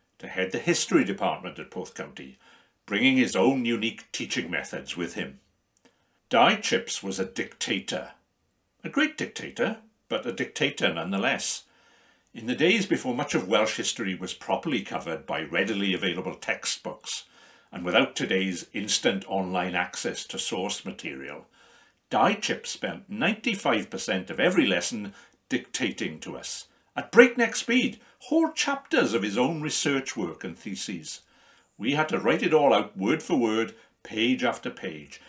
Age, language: 60-79, English